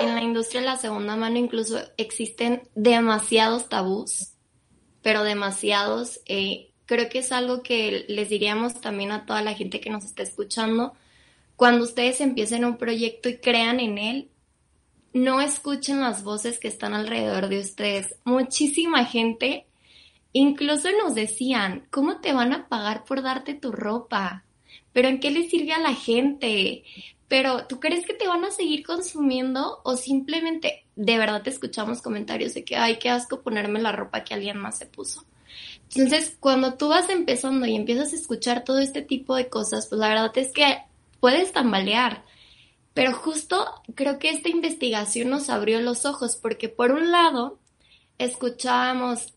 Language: Spanish